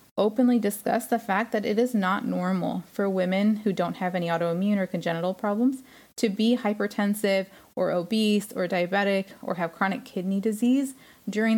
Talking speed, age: 165 wpm, 20-39